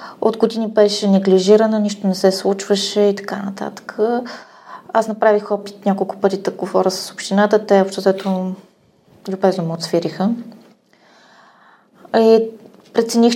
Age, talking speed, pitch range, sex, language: 20-39, 125 wpm, 185-210 Hz, female, Bulgarian